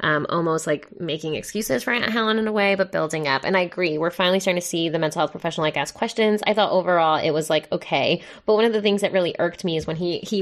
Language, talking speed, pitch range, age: English, 280 wpm, 165-210 Hz, 20-39